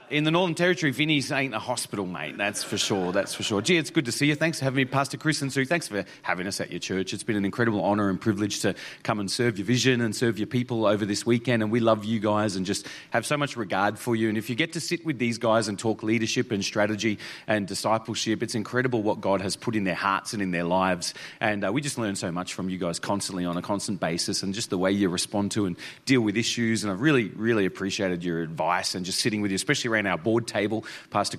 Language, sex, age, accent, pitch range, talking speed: English, male, 30-49, Australian, 100-150 Hz, 270 wpm